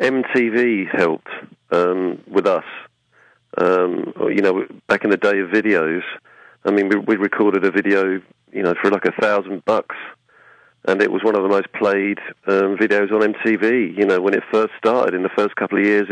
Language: English